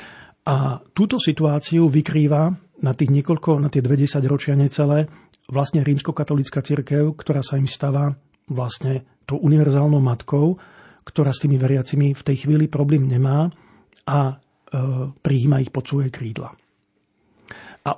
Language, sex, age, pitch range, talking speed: Slovak, male, 40-59, 135-155 Hz, 135 wpm